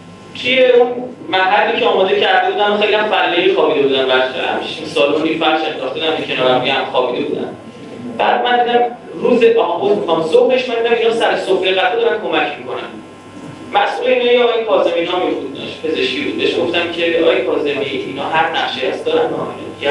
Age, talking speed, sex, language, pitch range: 30-49, 180 wpm, male, Persian, 140-200 Hz